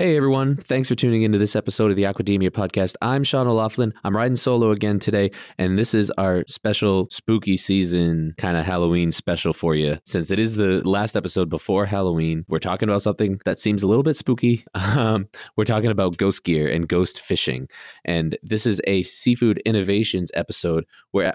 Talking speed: 190 wpm